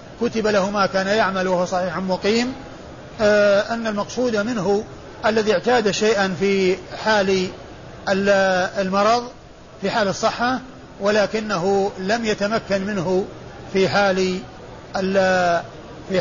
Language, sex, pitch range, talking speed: Arabic, male, 185-210 Hz, 100 wpm